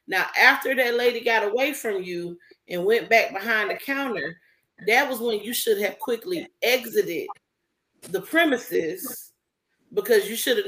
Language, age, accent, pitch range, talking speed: English, 30-49, American, 185-290 Hz, 155 wpm